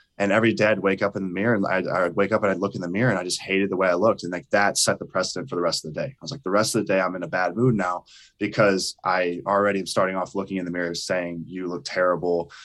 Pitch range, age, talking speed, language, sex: 90-110 Hz, 10-29, 325 wpm, English, male